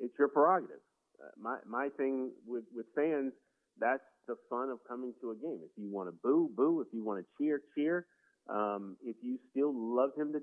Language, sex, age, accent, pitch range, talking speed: English, male, 30-49, American, 110-135 Hz, 215 wpm